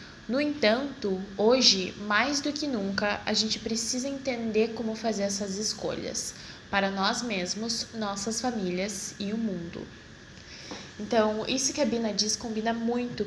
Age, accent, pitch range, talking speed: 10-29, Brazilian, 200-245 Hz, 140 wpm